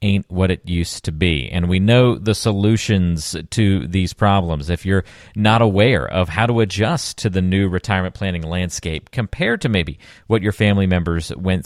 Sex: male